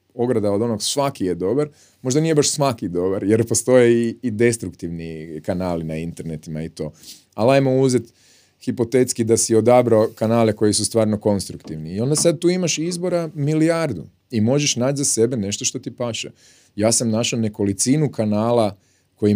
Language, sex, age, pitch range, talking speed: Croatian, male, 30-49, 95-125 Hz, 170 wpm